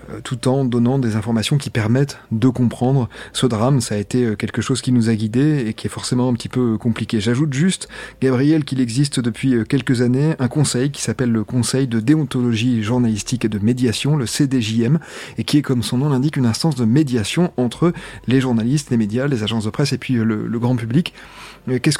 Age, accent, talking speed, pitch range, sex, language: 30-49, French, 210 wpm, 115-145 Hz, male, French